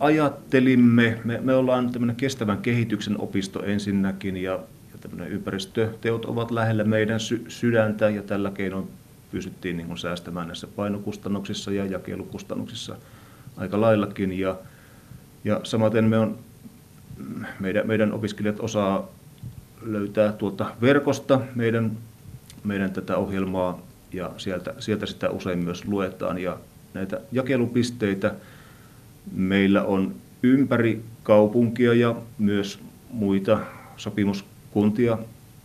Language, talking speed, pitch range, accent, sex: Finnish, 105 wpm, 100-115 Hz, native, male